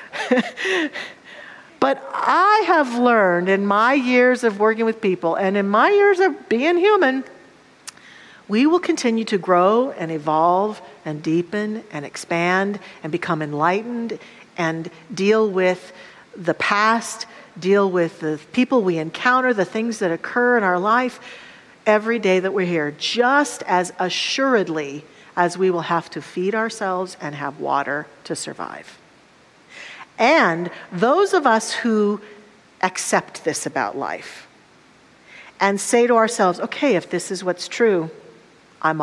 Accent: American